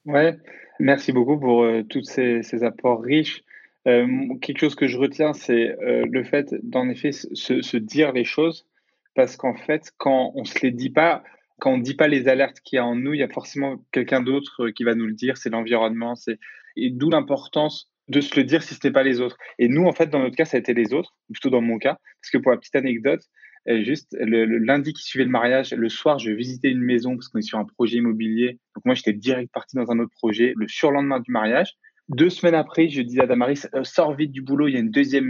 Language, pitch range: French, 120-150 Hz